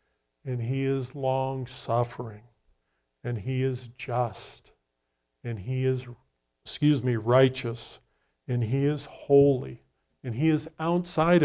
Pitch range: 110-140 Hz